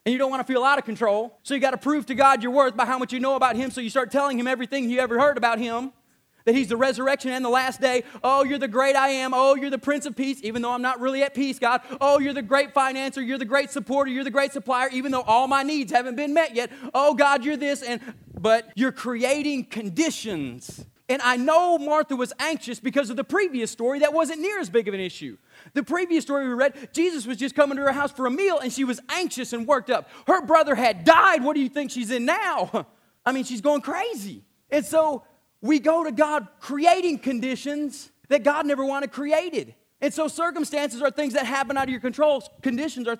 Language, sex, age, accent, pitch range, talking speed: English, male, 30-49, American, 250-285 Hz, 245 wpm